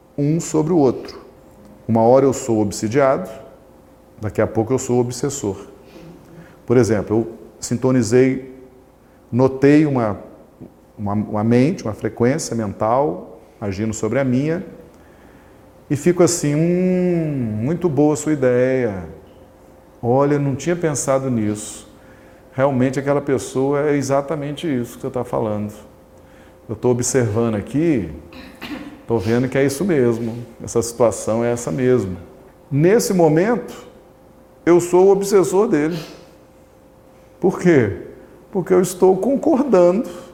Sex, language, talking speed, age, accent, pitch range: male, Portuguese, 125 wpm, 40-59, Brazilian, 115-160 Hz